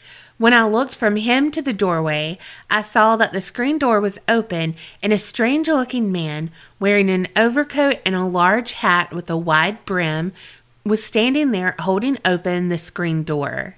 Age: 30-49